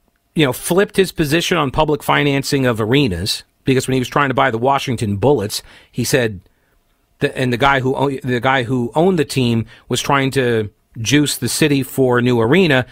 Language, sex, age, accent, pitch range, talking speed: English, male, 40-59, American, 120-160 Hz, 185 wpm